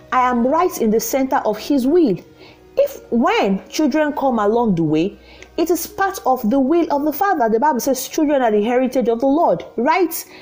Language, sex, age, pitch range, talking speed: English, female, 40-59, 215-320 Hz, 205 wpm